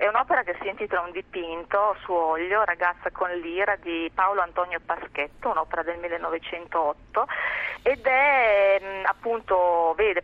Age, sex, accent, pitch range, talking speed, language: 30-49, female, native, 170-200 Hz, 135 wpm, Italian